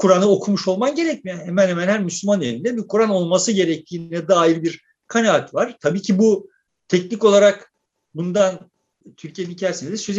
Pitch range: 160-205 Hz